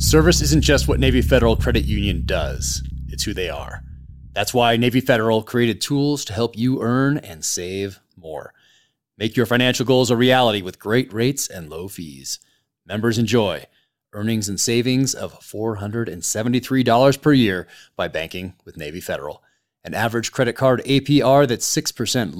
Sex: male